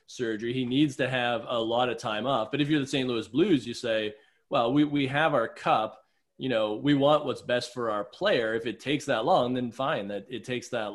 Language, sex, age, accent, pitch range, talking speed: English, male, 20-39, American, 115-145 Hz, 245 wpm